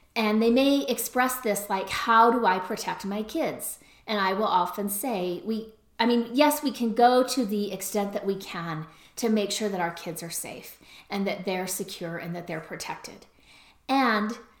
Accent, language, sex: American, English, female